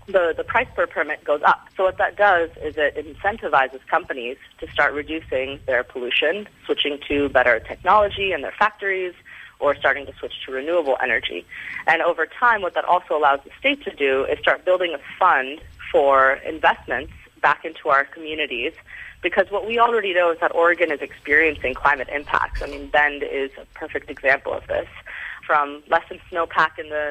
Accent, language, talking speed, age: American, English, 180 wpm, 30-49